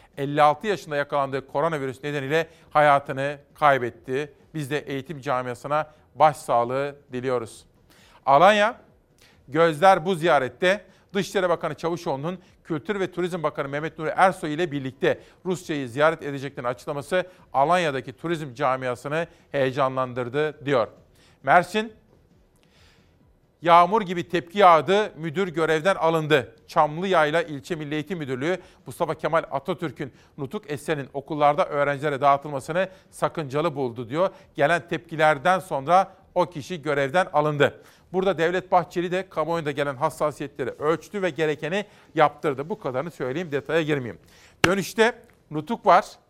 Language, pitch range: Turkish, 145-180 Hz